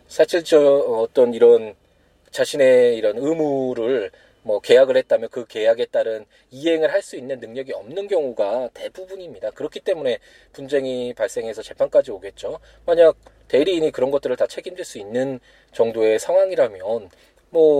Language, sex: Korean, male